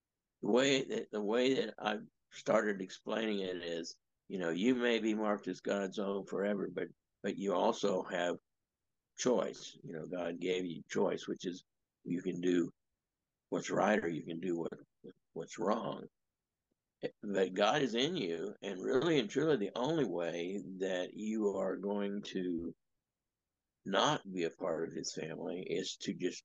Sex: male